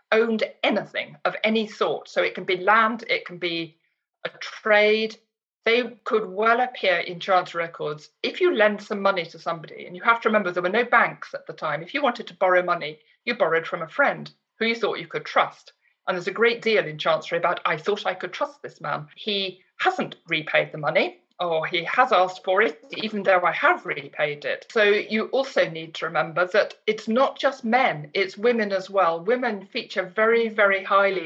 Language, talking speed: English, 210 wpm